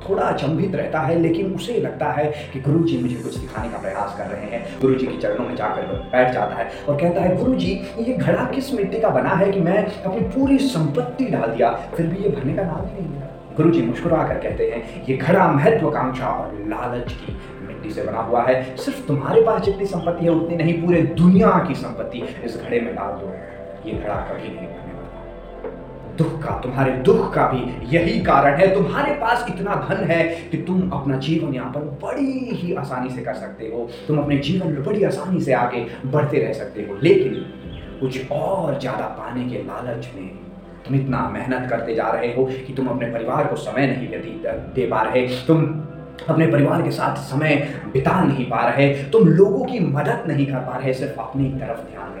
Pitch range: 130-180 Hz